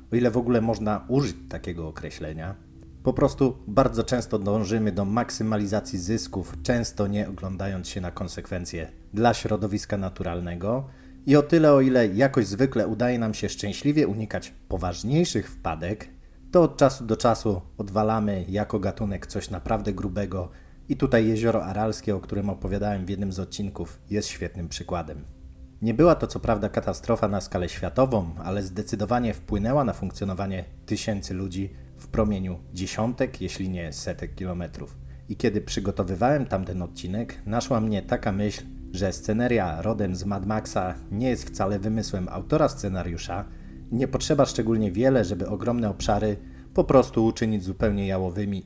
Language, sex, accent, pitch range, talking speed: Polish, male, native, 90-115 Hz, 150 wpm